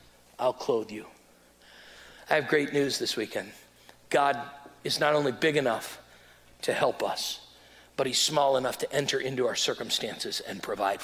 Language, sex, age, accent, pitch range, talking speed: English, male, 40-59, American, 135-170 Hz, 160 wpm